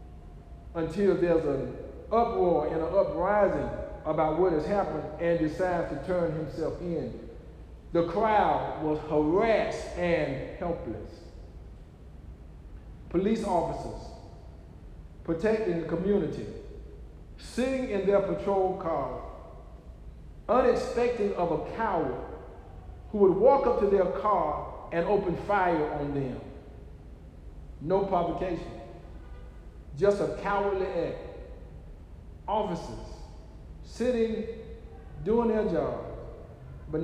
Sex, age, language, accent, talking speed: male, 50-69, English, American, 100 wpm